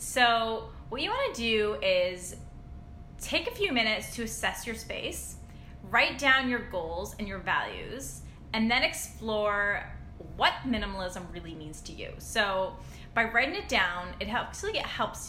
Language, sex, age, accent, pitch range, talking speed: English, female, 10-29, American, 180-255 Hz, 155 wpm